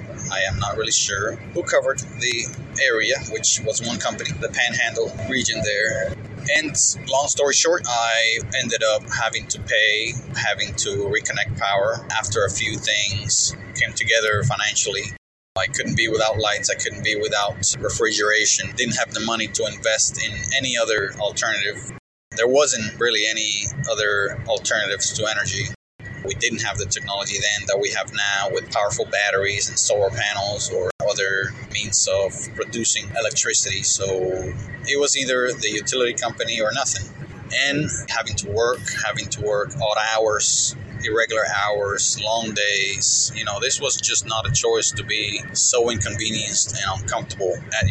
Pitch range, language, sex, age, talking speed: 105-125 Hz, English, male, 30-49, 155 wpm